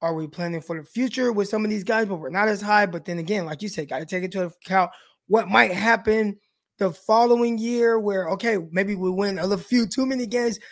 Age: 20-39